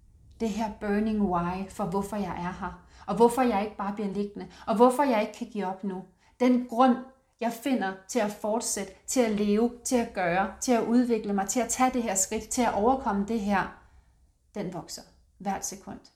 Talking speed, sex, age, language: 210 wpm, female, 30-49, Danish